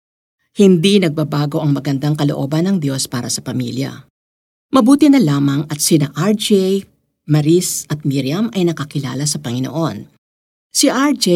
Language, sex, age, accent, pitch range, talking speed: Filipino, female, 50-69, native, 145-195 Hz, 130 wpm